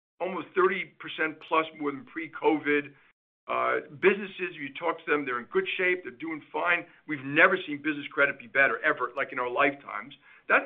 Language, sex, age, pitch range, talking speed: English, male, 50-69, 140-185 Hz, 185 wpm